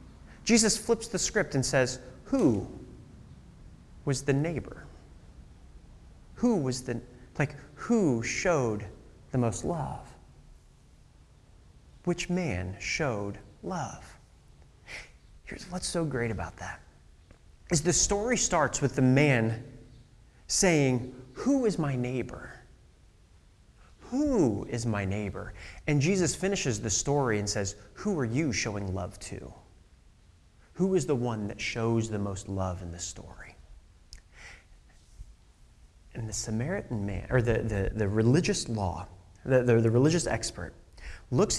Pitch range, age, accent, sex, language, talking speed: 90-145 Hz, 30-49, American, male, English, 125 wpm